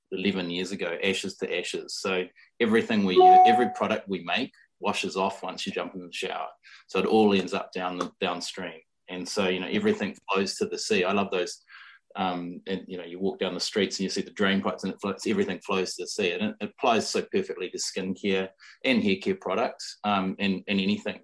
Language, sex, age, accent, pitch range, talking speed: English, male, 20-39, Australian, 95-125 Hz, 225 wpm